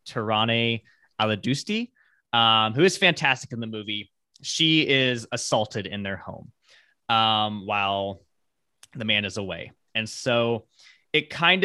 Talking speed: 130 wpm